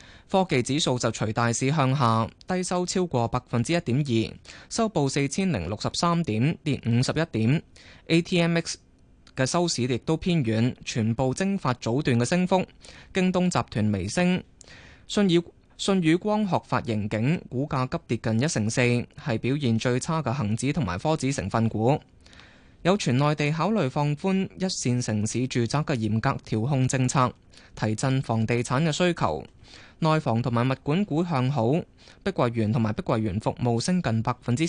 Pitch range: 115-160 Hz